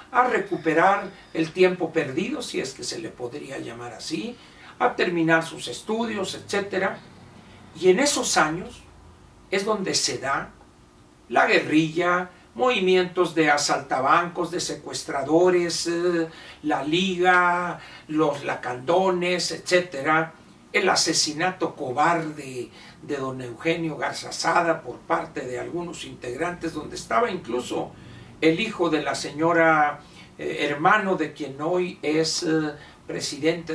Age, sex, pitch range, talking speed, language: 60-79, male, 150-185 Hz, 115 wpm, Spanish